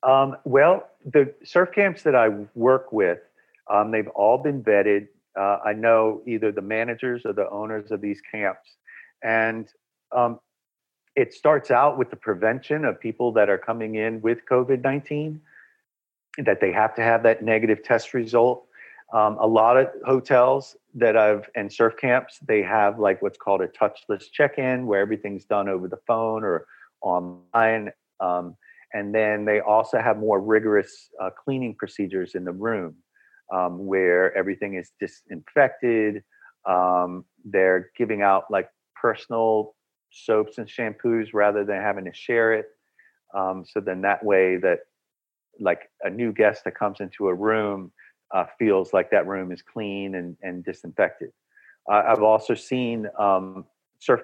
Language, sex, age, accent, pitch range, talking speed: English, male, 50-69, American, 100-120 Hz, 155 wpm